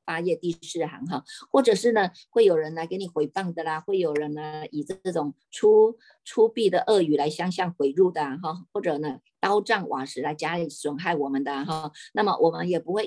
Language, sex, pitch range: Chinese, female, 150-225 Hz